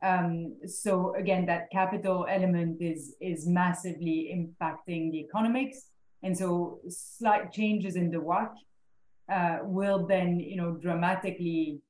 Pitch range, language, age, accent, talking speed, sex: 165-190 Hz, English, 30-49, French, 125 wpm, female